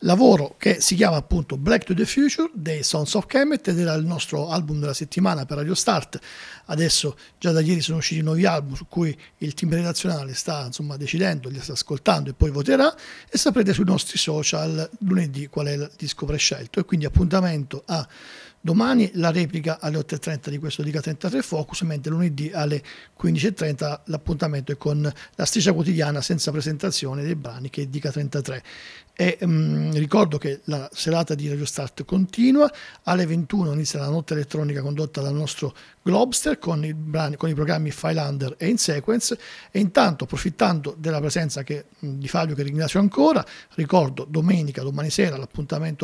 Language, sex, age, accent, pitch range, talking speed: Italian, male, 50-69, native, 150-190 Hz, 170 wpm